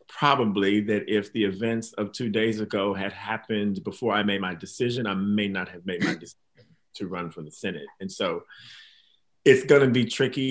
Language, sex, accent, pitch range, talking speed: English, male, American, 110-130 Hz, 200 wpm